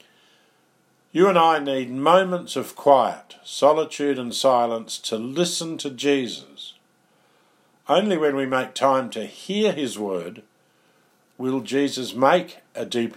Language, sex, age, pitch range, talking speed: English, male, 50-69, 120-160 Hz, 130 wpm